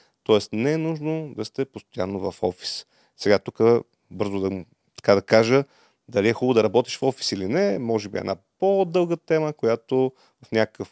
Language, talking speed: Bulgarian, 180 wpm